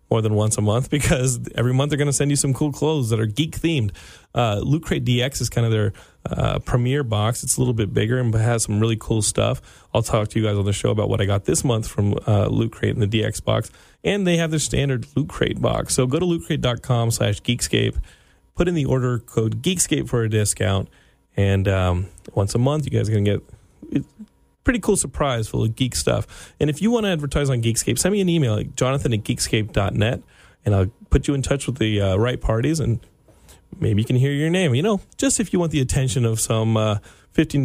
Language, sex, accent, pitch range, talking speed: English, male, American, 105-140 Hz, 235 wpm